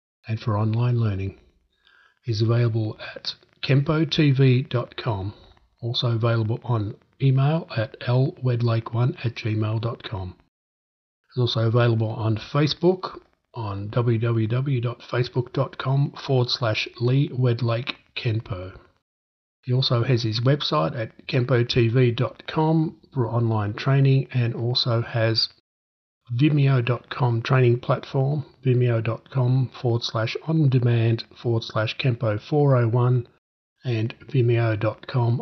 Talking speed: 90 wpm